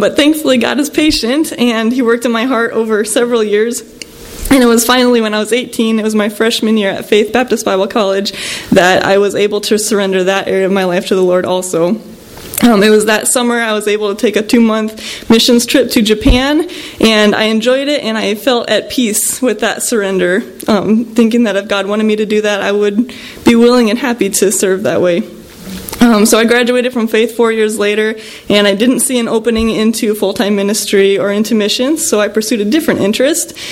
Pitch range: 210-245 Hz